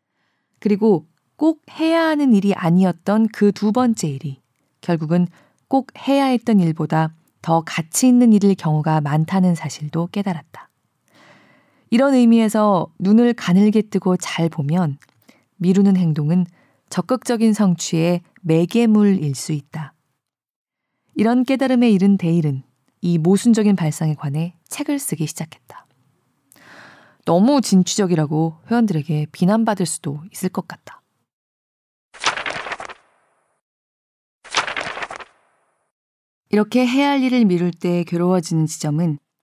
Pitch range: 155-215 Hz